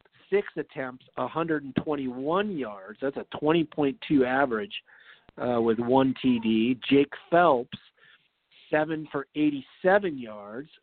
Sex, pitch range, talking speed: male, 125-150 Hz, 100 wpm